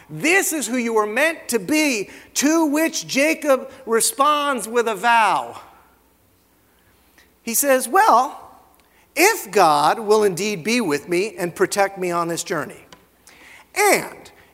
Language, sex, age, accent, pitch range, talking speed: English, male, 50-69, American, 215-295 Hz, 130 wpm